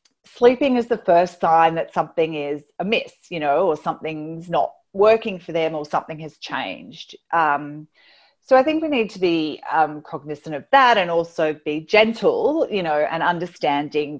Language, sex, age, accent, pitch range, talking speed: English, female, 40-59, Australian, 145-200 Hz, 175 wpm